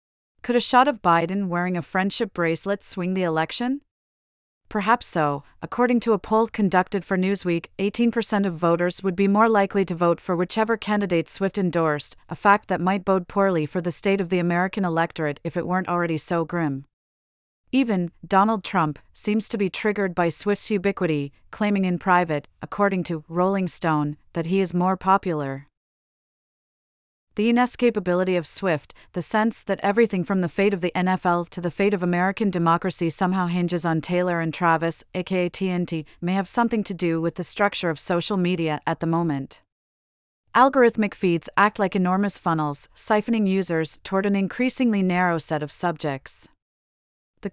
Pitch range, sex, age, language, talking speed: 170-205 Hz, female, 40-59, English, 170 wpm